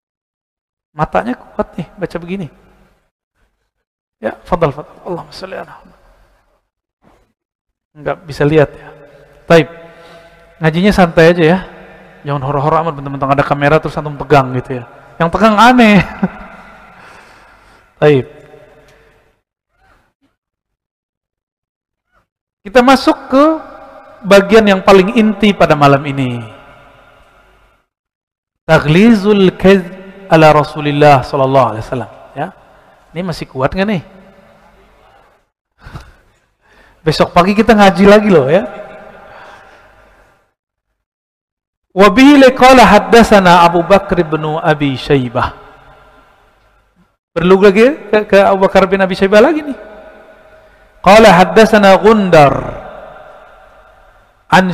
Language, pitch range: Indonesian, 145-200 Hz